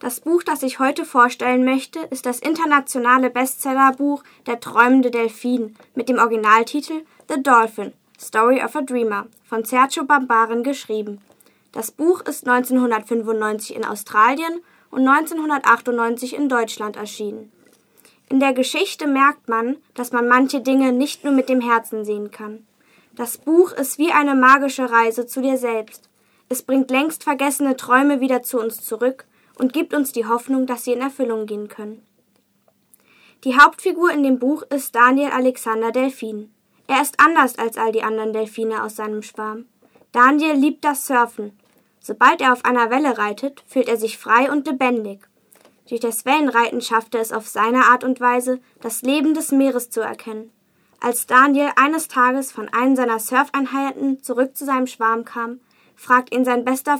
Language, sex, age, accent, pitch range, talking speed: German, female, 10-29, German, 230-275 Hz, 160 wpm